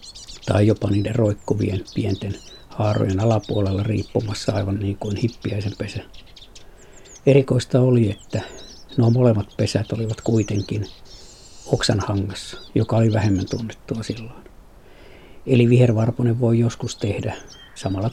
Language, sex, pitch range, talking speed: Finnish, male, 100-115 Hz, 110 wpm